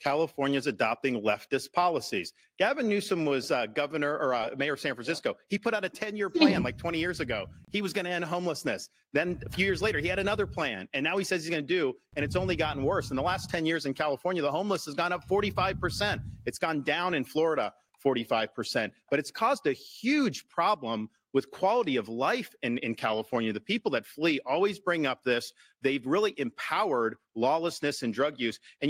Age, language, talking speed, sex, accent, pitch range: 40-59, English, 210 wpm, male, American, 140-195 Hz